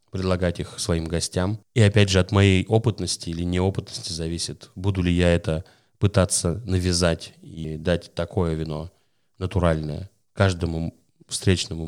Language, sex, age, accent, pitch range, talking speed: Russian, male, 30-49, native, 85-100 Hz, 130 wpm